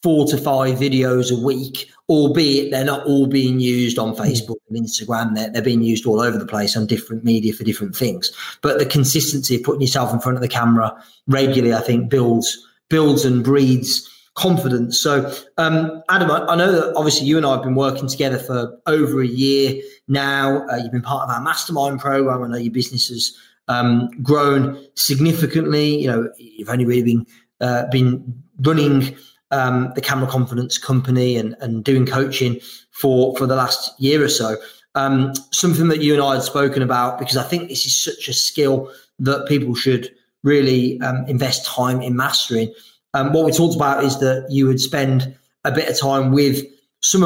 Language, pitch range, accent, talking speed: English, 125-140 Hz, British, 195 wpm